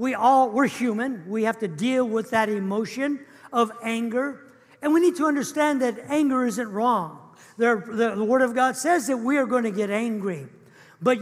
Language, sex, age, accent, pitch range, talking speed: English, male, 50-69, American, 215-265 Hz, 200 wpm